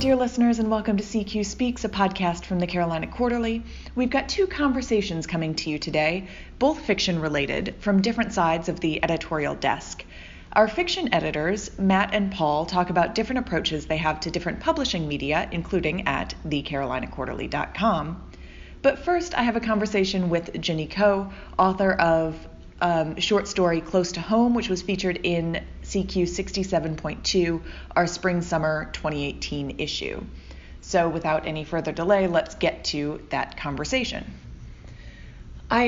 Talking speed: 150 wpm